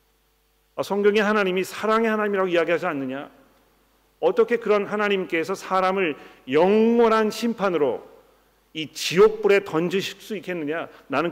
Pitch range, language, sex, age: 135-185 Hz, Korean, male, 40-59